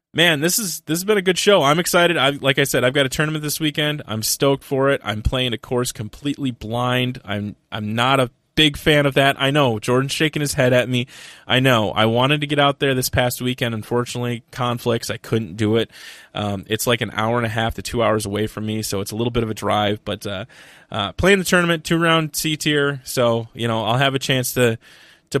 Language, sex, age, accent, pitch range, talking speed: English, male, 20-39, American, 110-140 Hz, 250 wpm